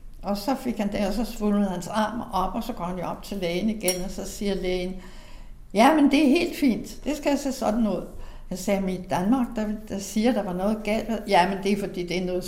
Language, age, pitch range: Danish, 60-79, 185-215 Hz